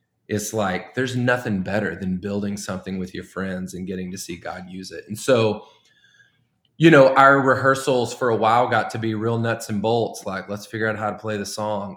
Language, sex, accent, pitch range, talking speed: English, male, American, 100-120 Hz, 215 wpm